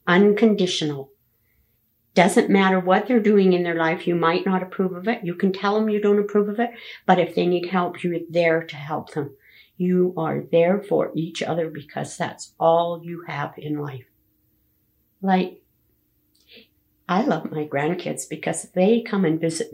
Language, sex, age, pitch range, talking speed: English, female, 50-69, 165-215 Hz, 175 wpm